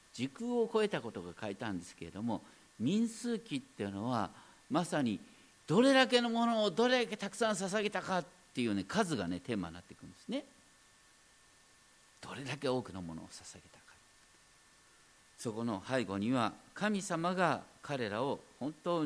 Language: Japanese